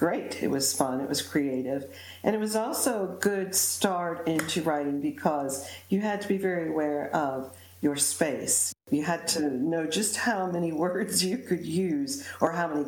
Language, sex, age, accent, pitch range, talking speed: English, female, 50-69, American, 140-175 Hz, 185 wpm